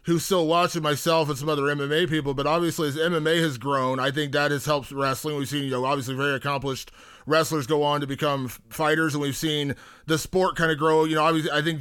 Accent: American